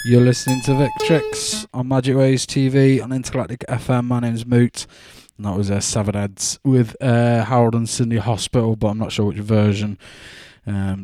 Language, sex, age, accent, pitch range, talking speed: English, male, 20-39, British, 105-125 Hz, 180 wpm